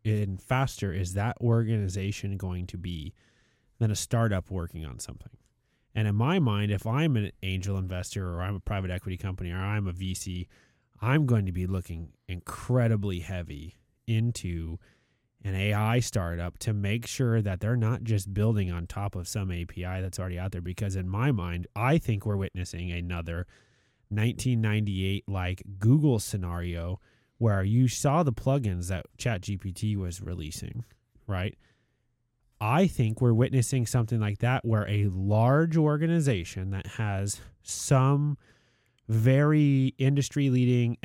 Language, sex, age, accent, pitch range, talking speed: English, male, 20-39, American, 95-120 Hz, 145 wpm